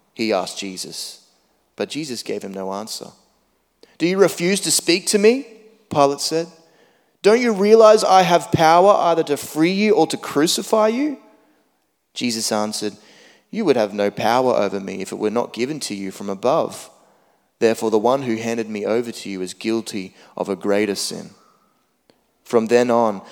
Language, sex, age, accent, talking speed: English, male, 20-39, Australian, 175 wpm